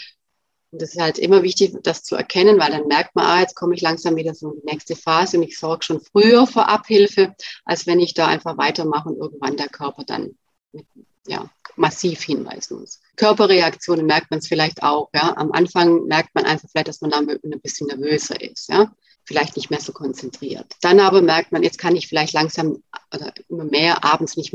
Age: 30-49